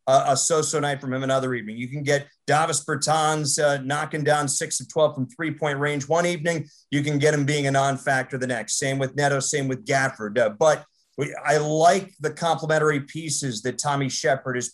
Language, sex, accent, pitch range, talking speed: English, male, American, 135-155 Hz, 210 wpm